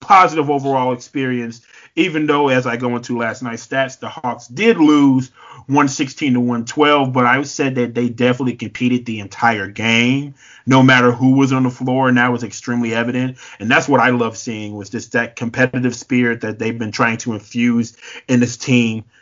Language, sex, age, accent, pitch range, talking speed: English, male, 30-49, American, 115-140 Hz, 190 wpm